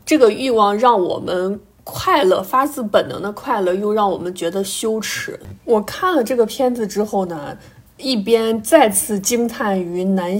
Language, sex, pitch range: Chinese, female, 185-225 Hz